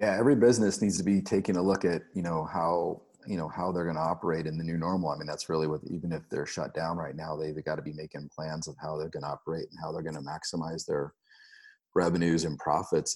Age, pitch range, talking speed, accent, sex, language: 30-49, 80-100 Hz, 265 wpm, American, male, English